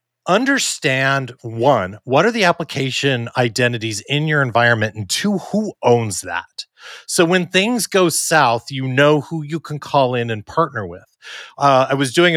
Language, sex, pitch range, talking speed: English, male, 110-150 Hz, 165 wpm